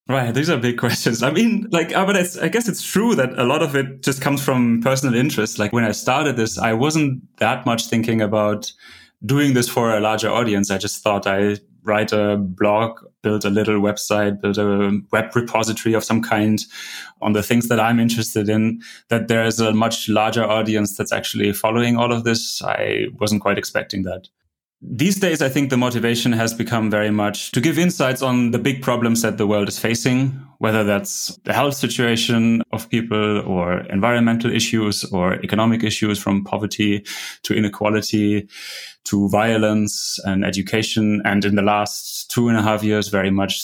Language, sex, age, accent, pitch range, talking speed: English, male, 20-39, German, 105-120 Hz, 185 wpm